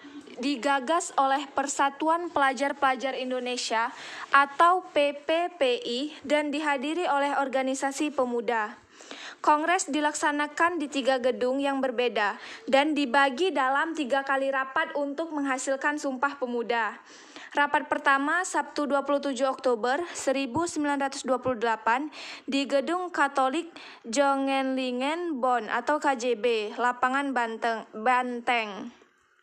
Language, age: Indonesian, 20-39